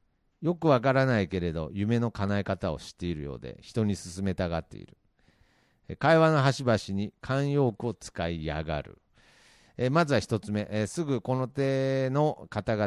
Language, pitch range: Japanese, 95-135 Hz